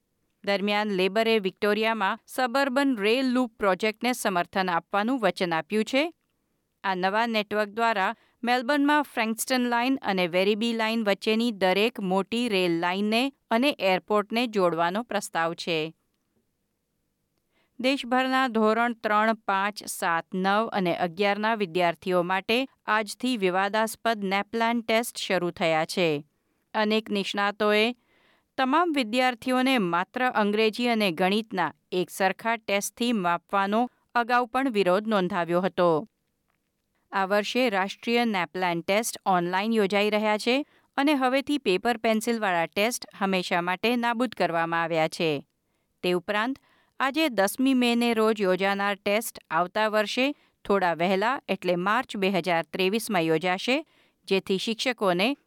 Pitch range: 190-240 Hz